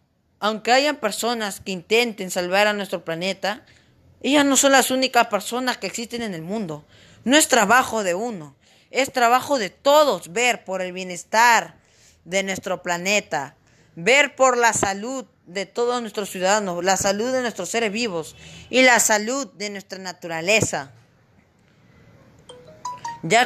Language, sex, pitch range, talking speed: Spanish, female, 170-235 Hz, 145 wpm